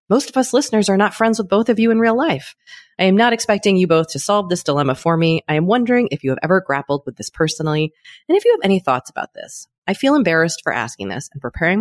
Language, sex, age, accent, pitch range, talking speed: English, female, 30-49, American, 140-230 Hz, 270 wpm